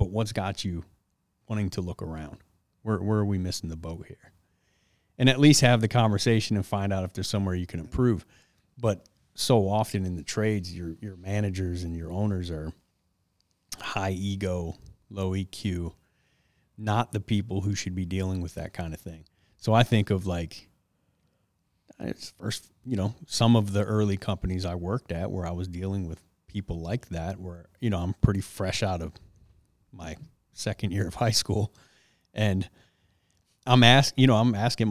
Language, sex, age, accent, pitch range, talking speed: English, male, 30-49, American, 90-110 Hz, 180 wpm